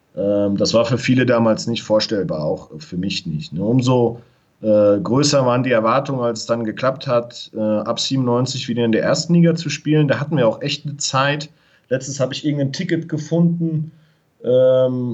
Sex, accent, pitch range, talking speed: male, German, 115-145 Hz, 180 wpm